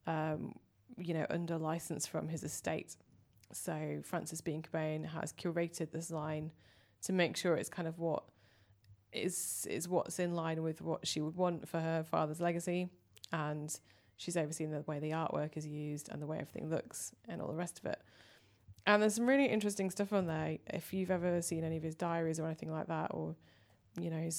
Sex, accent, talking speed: female, British, 200 wpm